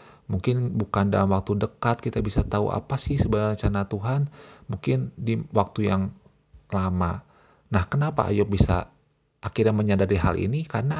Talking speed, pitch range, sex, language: 145 wpm, 95-110 Hz, male, Indonesian